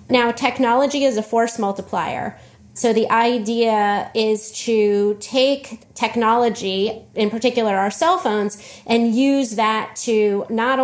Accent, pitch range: American, 205-235 Hz